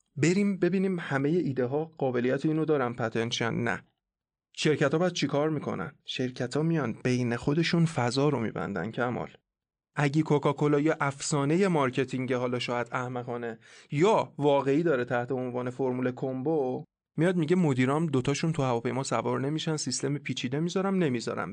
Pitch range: 130-165 Hz